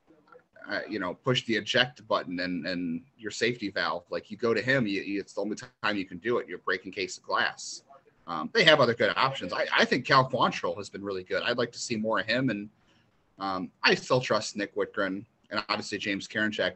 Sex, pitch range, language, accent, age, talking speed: male, 100-135 Hz, English, American, 30-49, 225 wpm